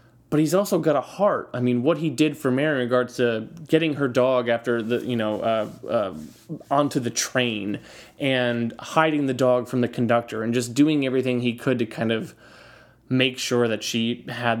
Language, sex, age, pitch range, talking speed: English, male, 20-39, 120-145 Hz, 200 wpm